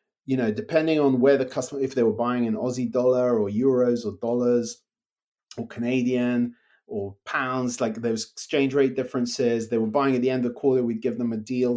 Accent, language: British, English